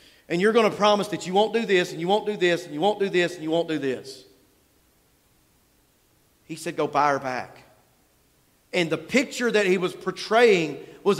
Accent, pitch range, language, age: American, 175-225 Hz, English, 40-59